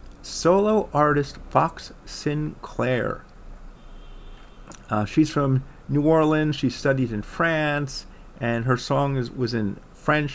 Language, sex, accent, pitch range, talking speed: English, male, American, 120-155 Hz, 115 wpm